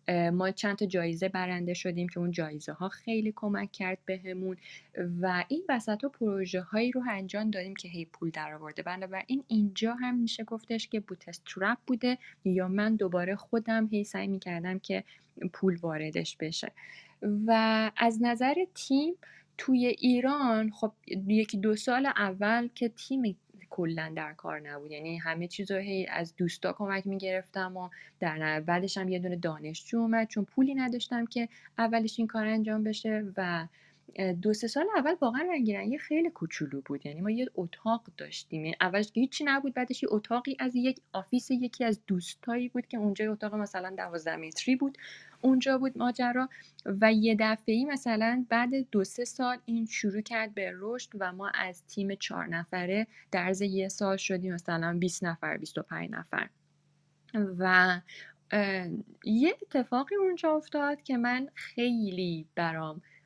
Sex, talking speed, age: female, 160 wpm, 20-39